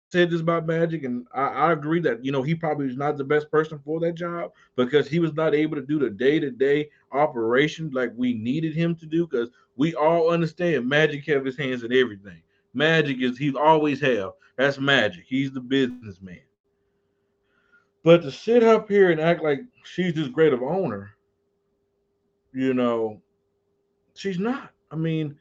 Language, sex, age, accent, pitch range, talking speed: English, male, 30-49, American, 125-170 Hz, 175 wpm